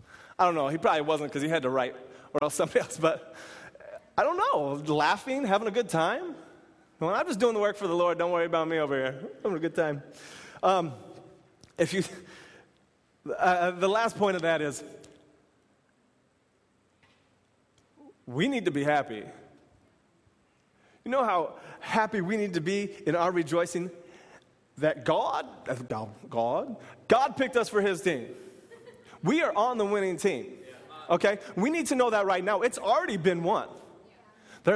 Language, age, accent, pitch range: English, 30-49, American, 150-195 Hz